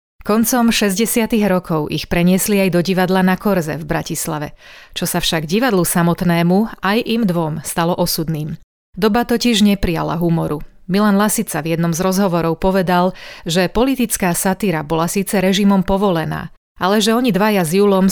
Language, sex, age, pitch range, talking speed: Slovak, female, 30-49, 170-200 Hz, 150 wpm